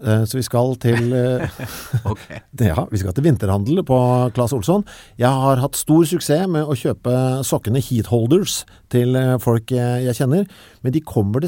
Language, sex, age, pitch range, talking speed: English, male, 50-69, 115-150 Hz, 155 wpm